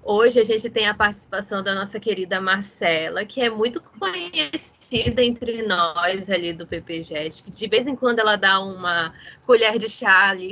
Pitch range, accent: 190-240 Hz, Brazilian